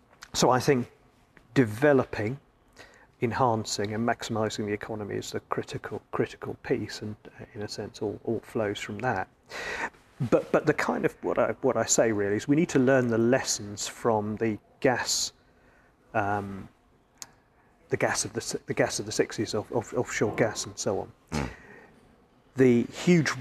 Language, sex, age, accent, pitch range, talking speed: English, male, 40-59, British, 105-135 Hz, 160 wpm